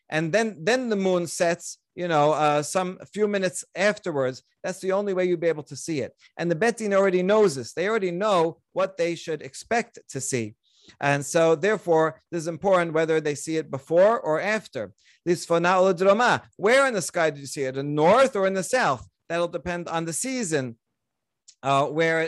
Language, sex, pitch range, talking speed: English, male, 150-195 Hz, 205 wpm